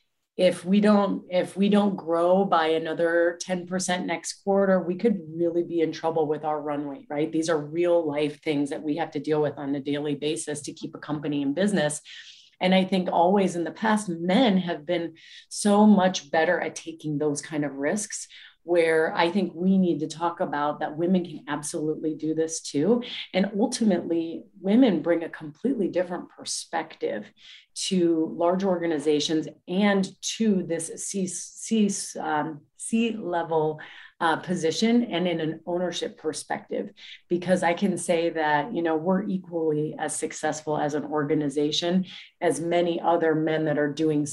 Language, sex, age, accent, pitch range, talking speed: English, female, 30-49, American, 155-185 Hz, 165 wpm